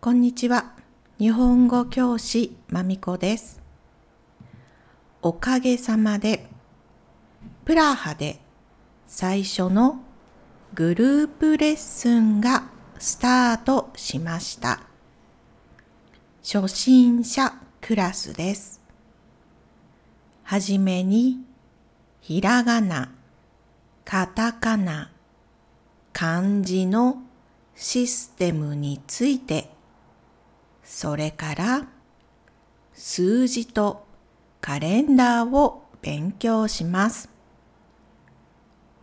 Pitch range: 165-245 Hz